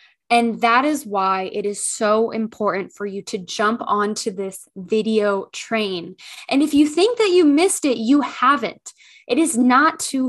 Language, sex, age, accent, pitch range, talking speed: English, female, 10-29, American, 210-265 Hz, 175 wpm